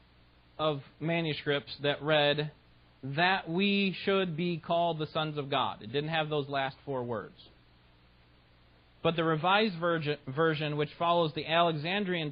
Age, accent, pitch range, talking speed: 30-49, American, 135-175 Hz, 135 wpm